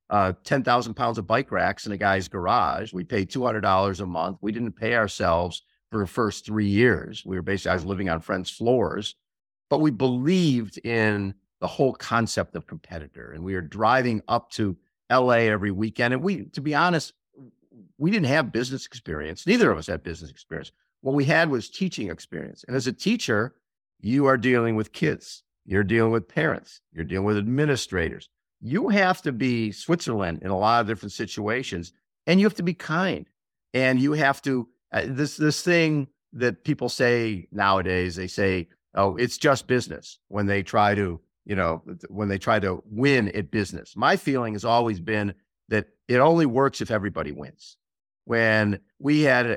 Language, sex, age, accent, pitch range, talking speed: English, male, 50-69, American, 100-135 Hz, 185 wpm